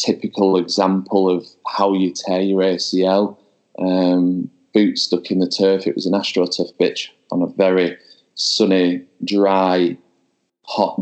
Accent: British